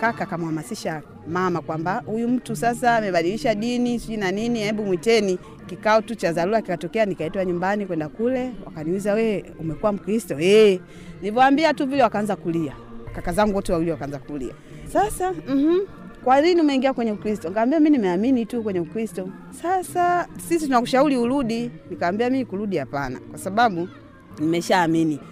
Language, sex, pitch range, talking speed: Swahili, female, 170-240 Hz, 140 wpm